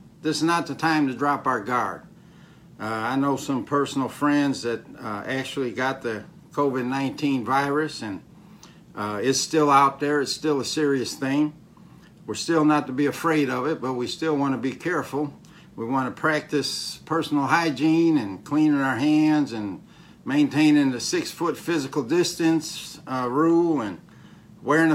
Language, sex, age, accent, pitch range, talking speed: English, male, 60-79, American, 130-155 Hz, 165 wpm